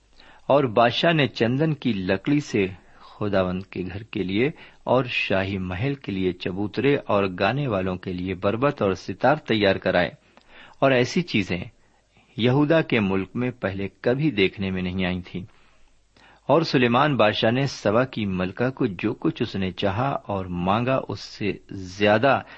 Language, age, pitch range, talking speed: Urdu, 50-69, 95-130 Hz, 160 wpm